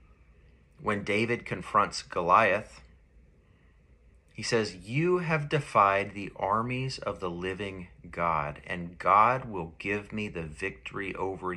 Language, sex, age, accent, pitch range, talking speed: English, male, 30-49, American, 75-100 Hz, 120 wpm